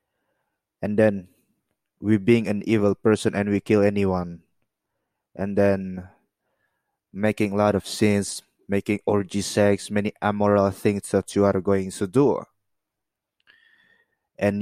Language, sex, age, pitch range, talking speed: English, male, 20-39, 95-105 Hz, 125 wpm